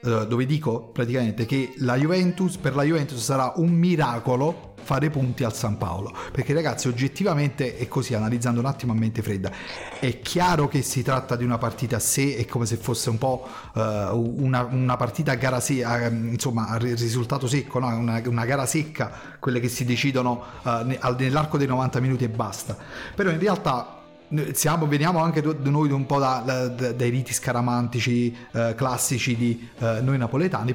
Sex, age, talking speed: male, 30-49, 170 wpm